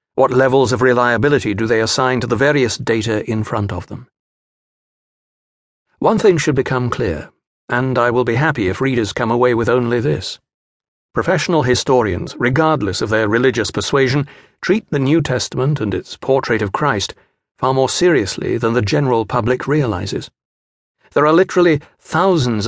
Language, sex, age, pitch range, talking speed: English, male, 60-79, 115-140 Hz, 160 wpm